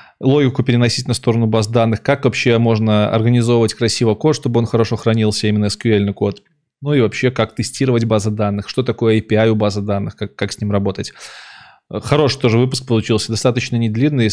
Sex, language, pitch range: male, Russian, 105-120 Hz